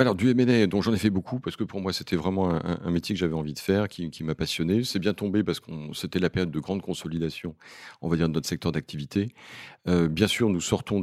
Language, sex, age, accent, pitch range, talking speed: French, male, 40-59, French, 85-105 Hz, 265 wpm